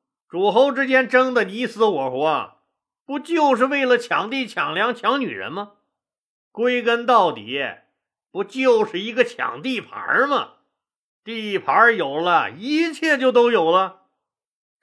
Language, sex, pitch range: Chinese, male, 195-255 Hz